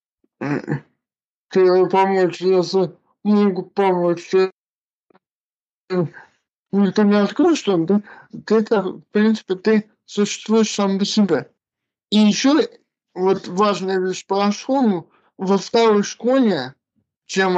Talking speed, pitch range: 100 wpm, 185-215 Hz